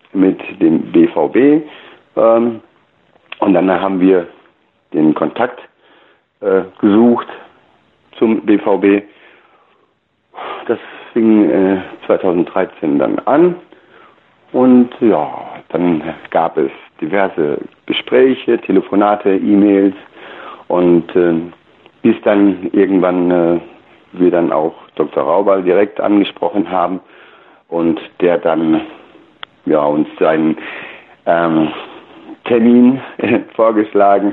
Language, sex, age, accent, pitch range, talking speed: German, male, 60-79, German, 85-125 Hz, 95 wpm